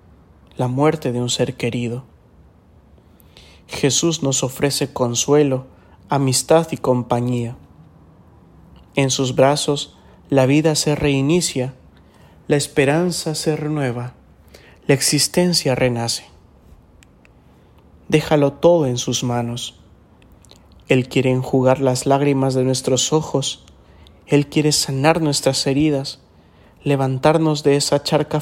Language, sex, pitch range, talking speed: English, male, 115-145 Hz, 105 wpm